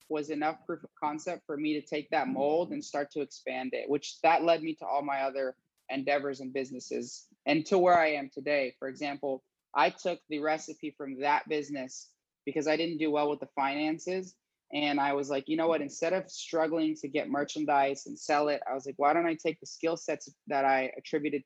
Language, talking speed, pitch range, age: English, 220 wpm, 135-155 Hz, 20-39